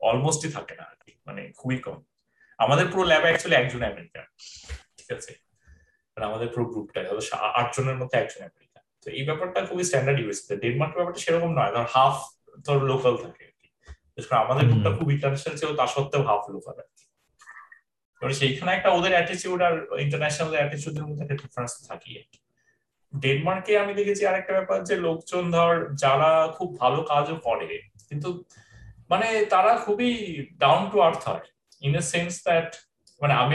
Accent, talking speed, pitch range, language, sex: native, 45 wpm, 135-175 Hz, Bengali, male